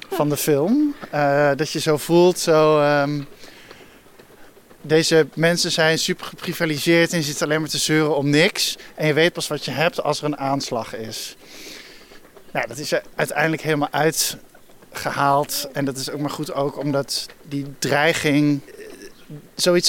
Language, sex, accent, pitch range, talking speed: Dutch, male, Dutch, 145-170 Hz, 160 wpm